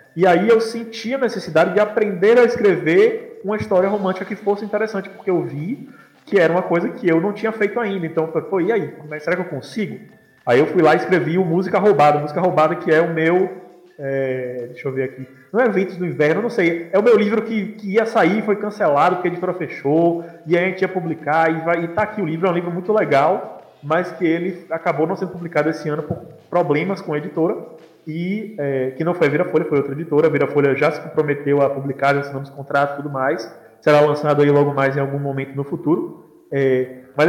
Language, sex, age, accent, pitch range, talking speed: Portuguese, male, 20-39, Brazilian, 145-190 Hz, 230 wpm